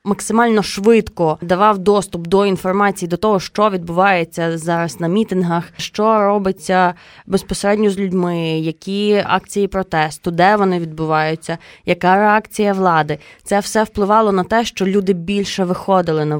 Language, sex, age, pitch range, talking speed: Ukrainian, female, 20-39, 180-210 Hz, 135 wpm